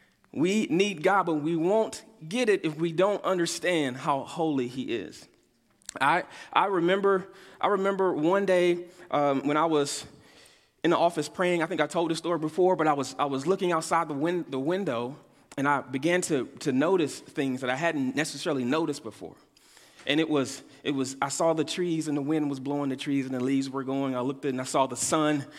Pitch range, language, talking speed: 145-185 Hz, English, 210 wpm